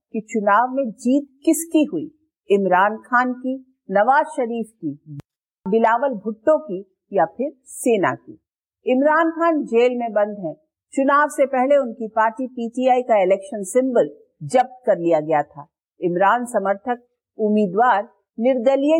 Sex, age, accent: female, 50-69, Indian